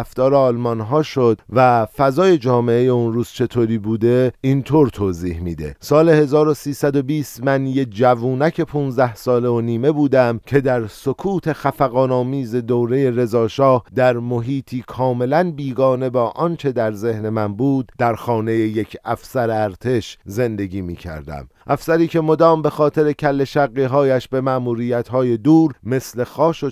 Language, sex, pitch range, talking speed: Persian, male, 115-145 Hz, 140 wpm